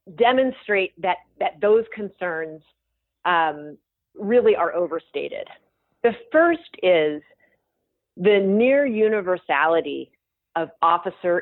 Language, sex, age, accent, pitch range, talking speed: English, female, 40-59, American, 170-225 Hz, 90 wpm